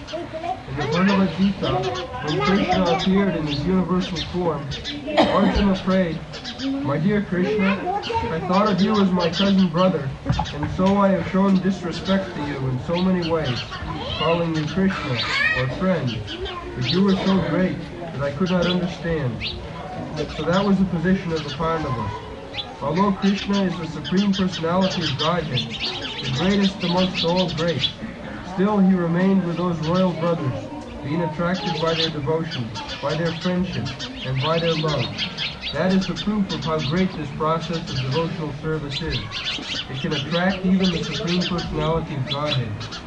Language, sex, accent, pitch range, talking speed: English, male, American, 150-190 Hz, 155 wpm